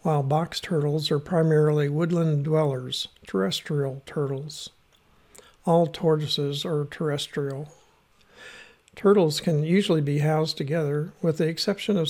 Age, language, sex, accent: 60-79, English, male, American